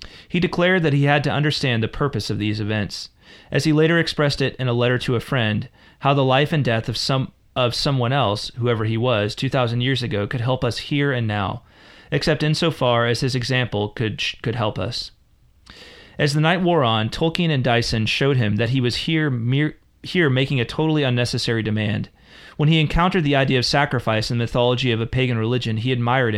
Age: 30-49